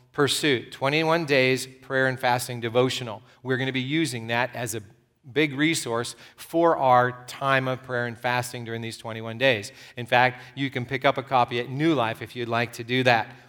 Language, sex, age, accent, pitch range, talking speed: English, male, 40-59, American, 125-155 Hz, 200 wpm